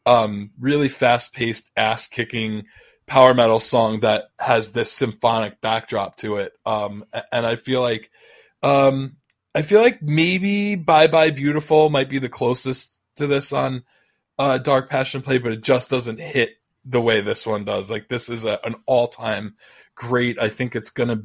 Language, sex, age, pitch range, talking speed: English, male, 20-39, 110-130 Hz, 165 wpm